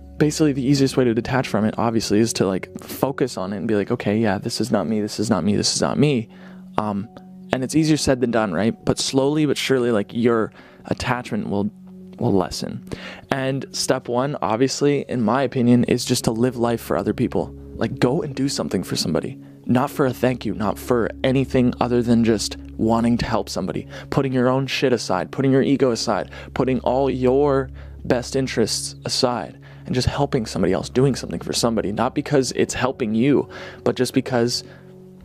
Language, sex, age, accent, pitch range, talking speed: English, male, 20-39, American, 115-135 Hz, 205 wpm